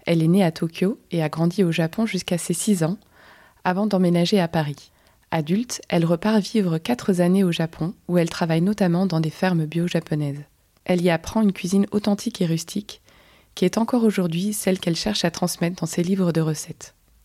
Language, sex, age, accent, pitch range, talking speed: French, female, 20-39, French, 165-195 Hz, 195 wpm